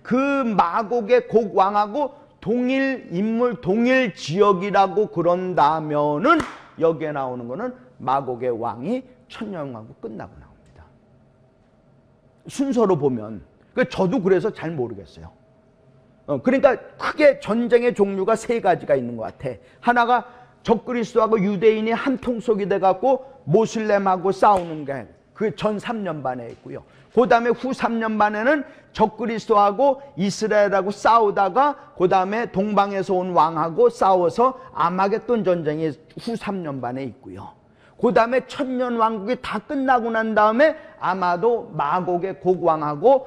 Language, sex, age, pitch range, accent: Korean, male, 40-59, 180-245 Hz, native